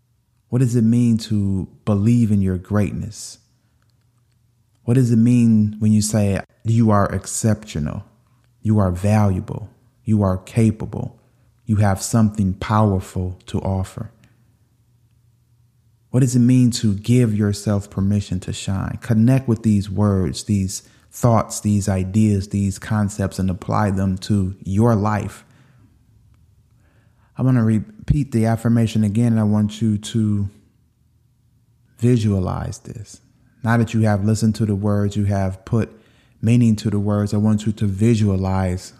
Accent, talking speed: American, 140 wpm